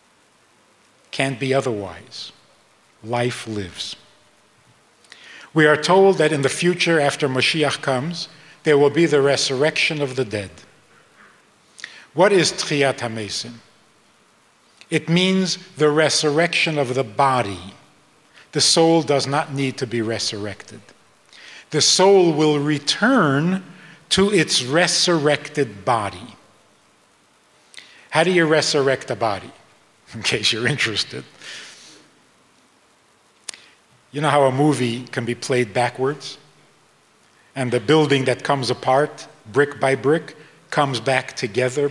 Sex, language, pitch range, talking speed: male, English, 125-160 Hz, 115 wpm